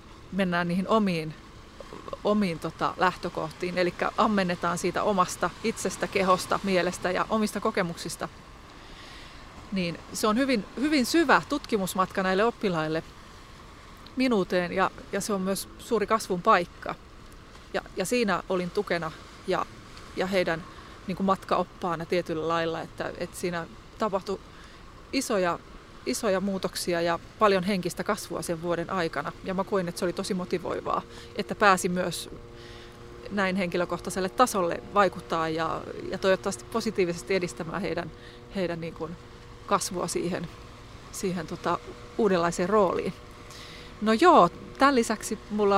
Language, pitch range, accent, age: Finnish, 170-205 Hz, native, 30-49